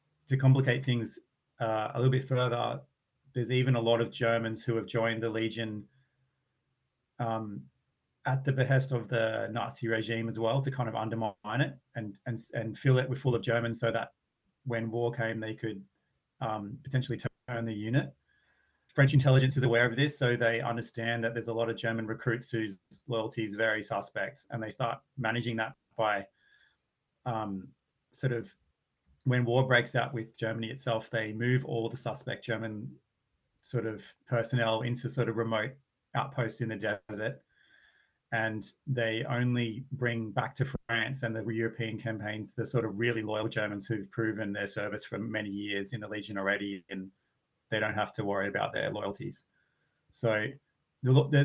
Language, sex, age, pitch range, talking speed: English, male, 30-49, 110-130 Hz, 175 wpm